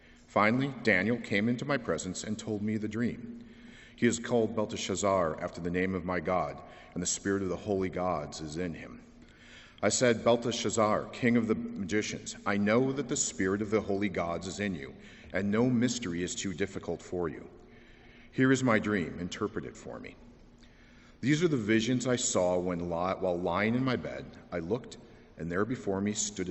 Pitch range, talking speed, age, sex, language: 90-120 Hz, 190 wpm, 50-69, male, English